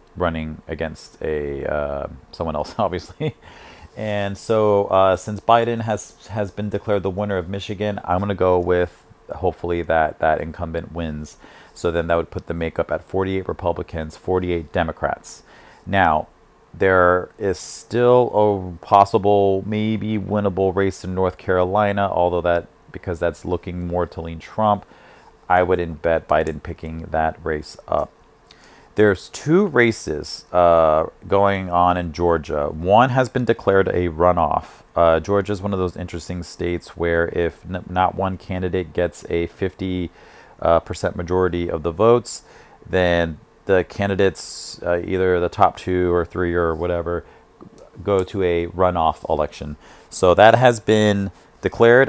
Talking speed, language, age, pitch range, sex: 145 wpm, English, 40-59, 85-100 Hz, male